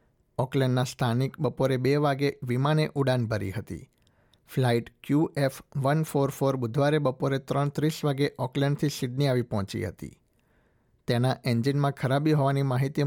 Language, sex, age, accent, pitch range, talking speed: Gujarati, male, 60-79, native, 125-145 Hz, 125 wpm